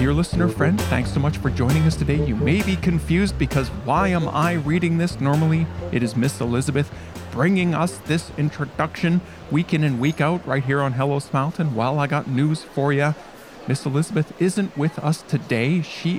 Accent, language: American, English